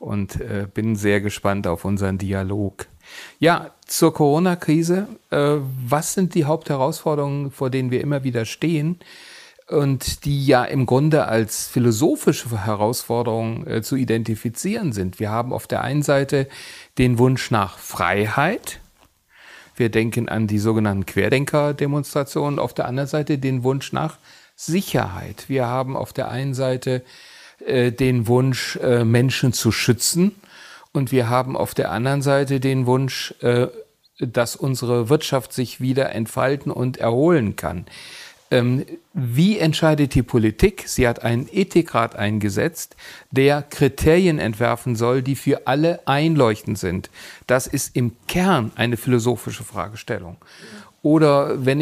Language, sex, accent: German, male, German